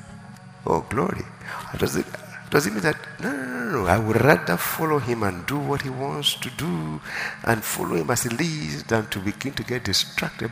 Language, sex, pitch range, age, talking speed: English, male, 80-135 Hz, 60-79, 195 wpm